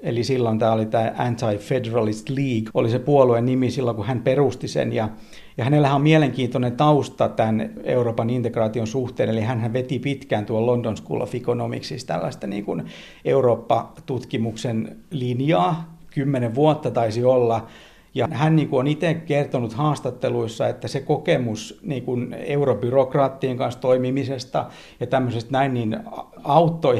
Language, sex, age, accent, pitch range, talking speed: Finnish, male, 50-69, native, 115-140 Hz, 135 wpm